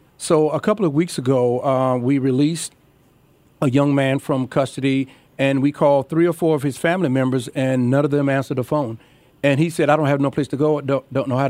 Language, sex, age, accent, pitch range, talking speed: English, male, 40-59, American, 130-150 Hz, 235 wpm